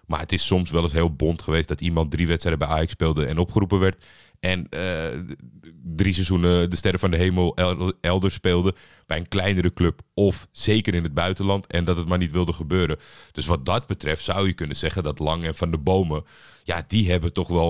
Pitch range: 80-95 Hz